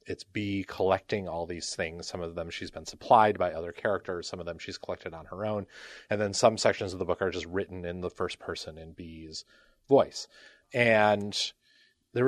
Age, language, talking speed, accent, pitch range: 30-49, English, 205 wpm, American, 90-115 Hz